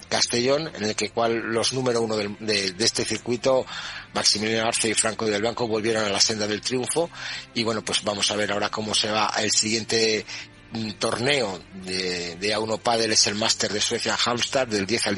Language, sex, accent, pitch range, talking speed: Spanish, male, Spanish, 105-120 Hz, 205 wpm